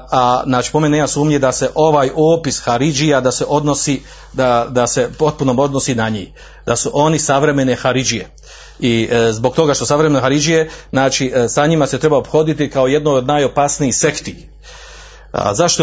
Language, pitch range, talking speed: Croatian, 130-155 Hz, 175 wpm